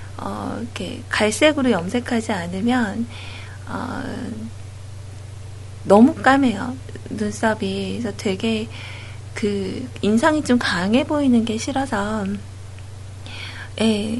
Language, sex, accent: Korean, female, native